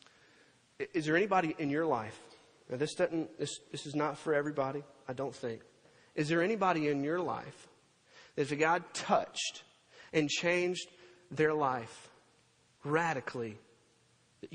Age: 40-59